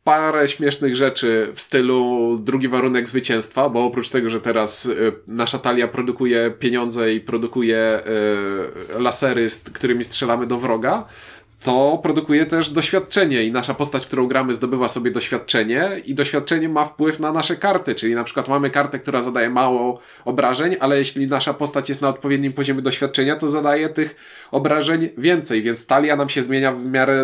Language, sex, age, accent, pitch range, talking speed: Polish, male, 20-39, native, 125-145 Hz, 165 wpm